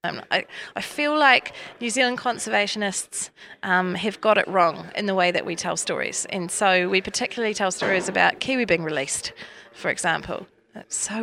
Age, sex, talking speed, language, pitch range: 30-49, female, 175 wpm, English, 200-250 Hz